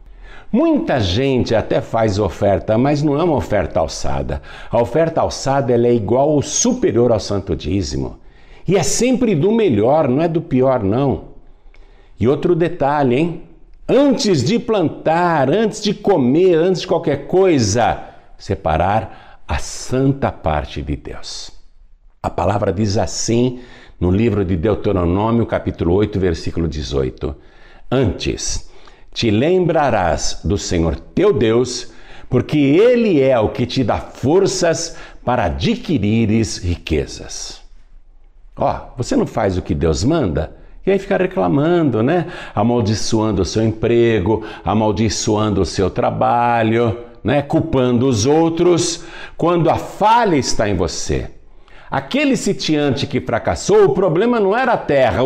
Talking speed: 130 wpm